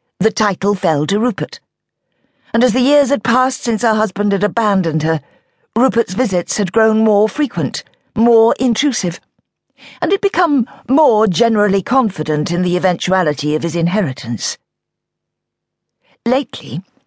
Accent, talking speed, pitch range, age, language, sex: British, 135 wpm, 165-255 Hz, 50-69, English, female